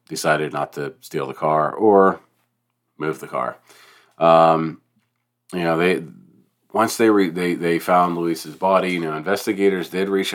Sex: male